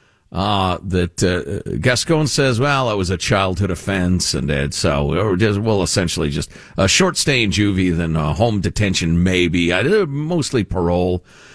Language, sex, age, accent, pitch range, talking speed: English, male, 50-69, American, 95-135 Hz, 175 wpm